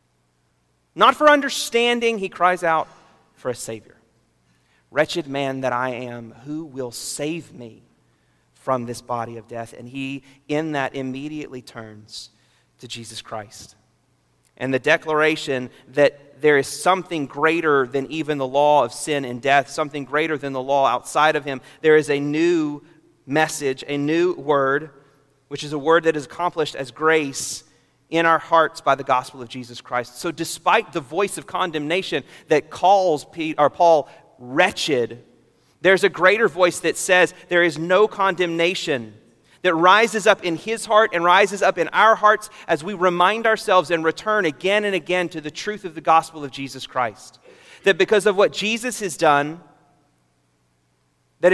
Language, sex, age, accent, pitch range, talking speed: English, male, 30-49, American, 130-180 Hz, 165 wpm